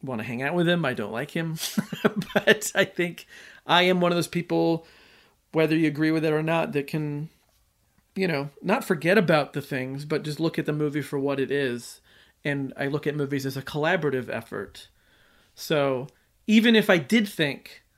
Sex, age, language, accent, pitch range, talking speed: male, 40-59, English, American, 140-180 Hz, 200 wpm